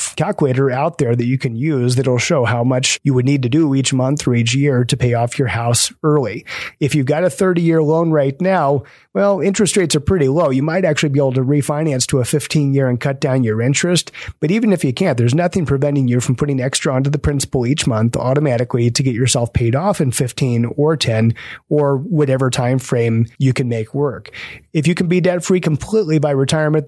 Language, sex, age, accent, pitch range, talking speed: English, male, 30-49, American, 125-155 Hz, 220 wpm